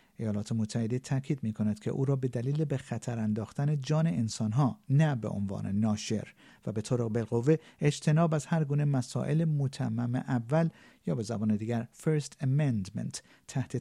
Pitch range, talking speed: 110-155 Hz, 160 wpm